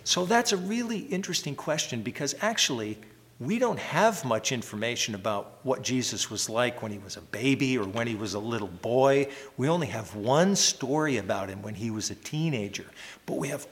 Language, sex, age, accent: English, male, 50-69, American